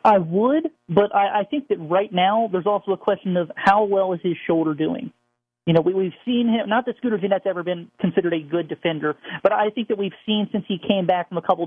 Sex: male